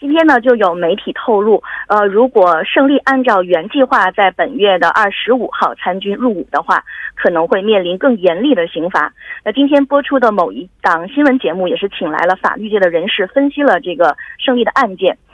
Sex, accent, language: female, Chinese, Korean